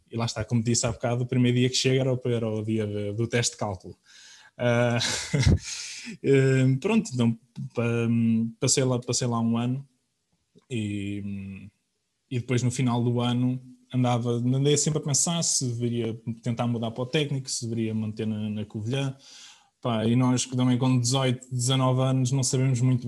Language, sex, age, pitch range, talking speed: Portuguese, male, 20-39, 115-130 Hz, 160 wpm